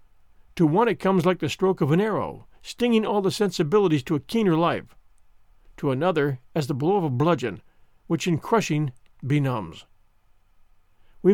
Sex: male